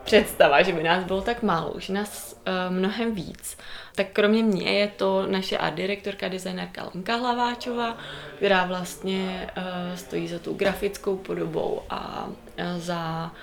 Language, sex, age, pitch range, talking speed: Czech, female, 20-39, 180-210 Hz, 140 wpm